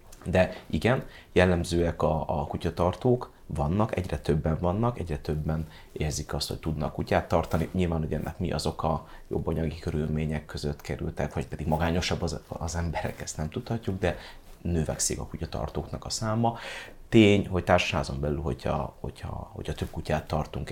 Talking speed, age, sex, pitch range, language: 155 wpm, 30-49, male, 75-95 Hz, Hungarian